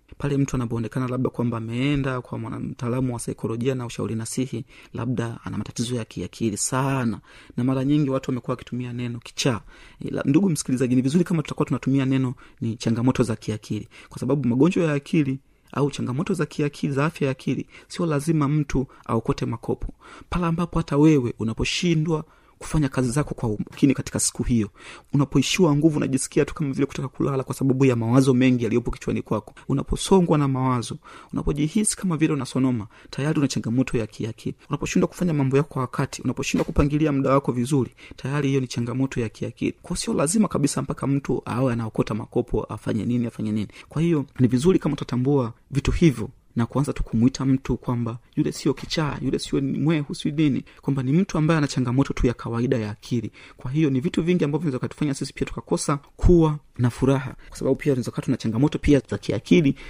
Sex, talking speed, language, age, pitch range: male, 180 wpm, Swahili, 30-49, 120-145 Hz